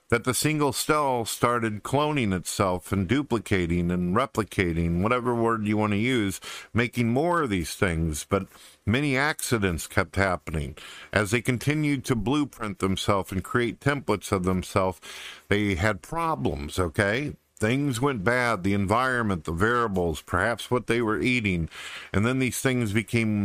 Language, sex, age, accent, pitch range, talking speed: English, male, 50-69, American, 95-125 Hz, 150 wpm